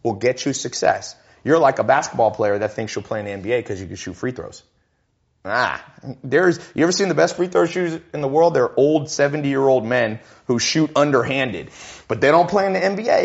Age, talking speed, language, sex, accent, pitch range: 30-49, 220 wpm, Hindi, male, American, 110-145 Hz